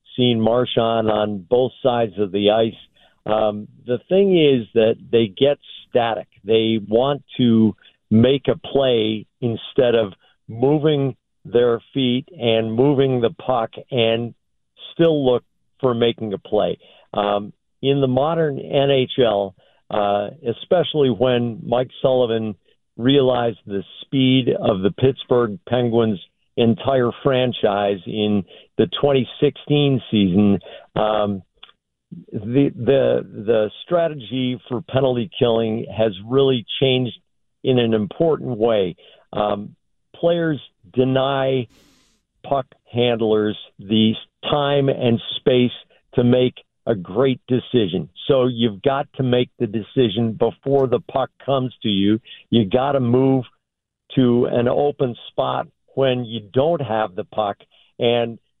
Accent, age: American, 50-69